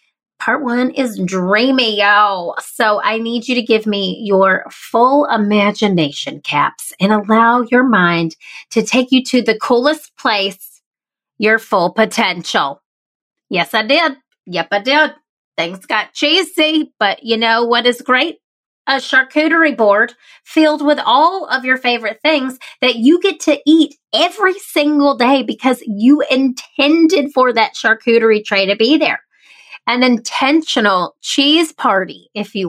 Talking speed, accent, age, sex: 145 wpm, American, 30-49, female